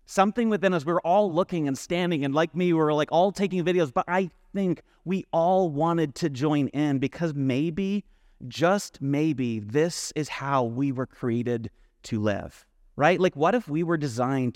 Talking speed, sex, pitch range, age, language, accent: 190 wpm, male, 135-180 Hz, 30-49, English, American